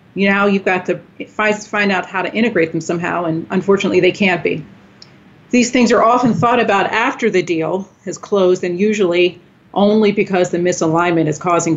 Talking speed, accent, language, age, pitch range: 185 wpm, American, English, 40-59, 170-200 Hz